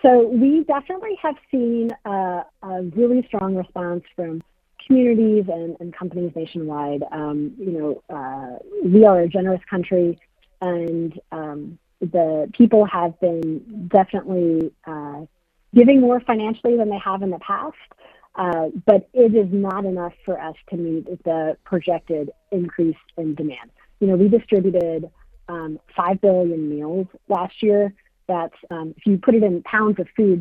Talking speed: 150 wpm